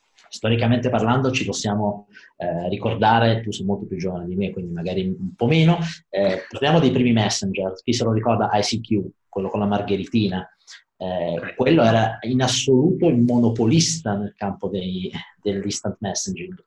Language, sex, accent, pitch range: Italian, male, native, 100-120 Hz